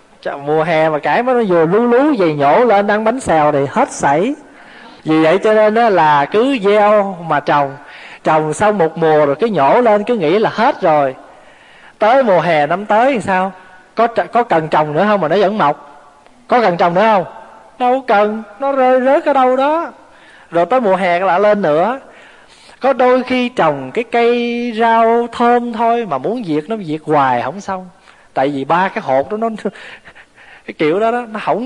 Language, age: Vietnamese, 20-39